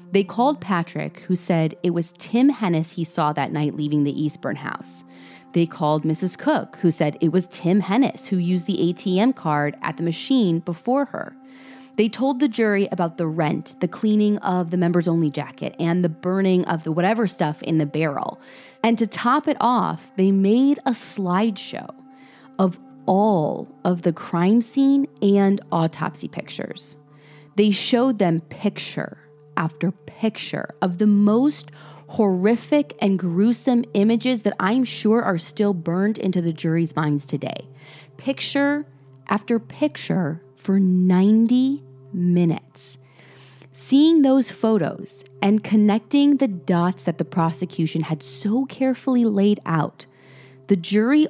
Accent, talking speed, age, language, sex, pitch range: American, 145 wpm, 30-49, English, female, 160-220 Hz